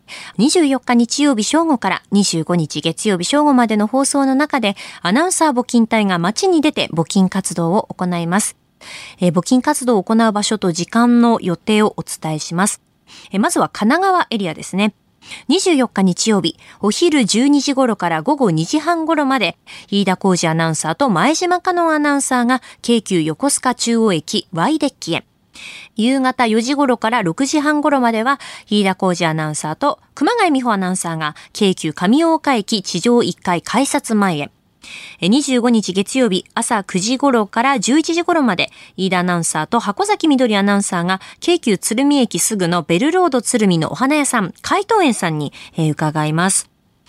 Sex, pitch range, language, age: female, 185-275 Hz, Japanese, 20-39